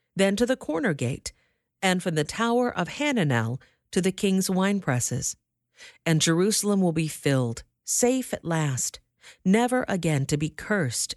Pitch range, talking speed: 140-195 Hz, 150 wpm